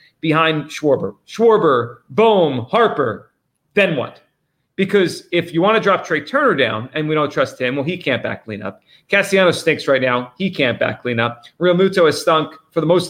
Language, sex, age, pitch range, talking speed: English, male, 40-59, 155-205 Hz, 195 wpm